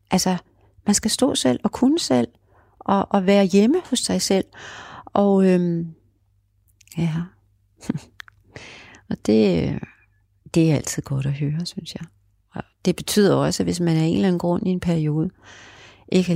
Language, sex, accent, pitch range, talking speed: Danish, female, native, 110-180 Hz, 160 wpm